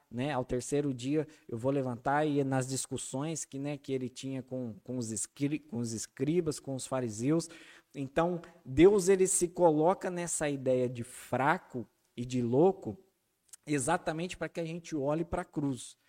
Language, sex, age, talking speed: Portuguese, male, 20-39, 170 wpm